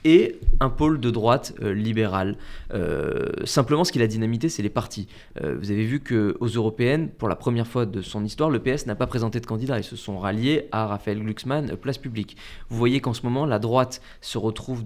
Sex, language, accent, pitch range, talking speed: male, French, French, 110-145 Hz, 225 wpm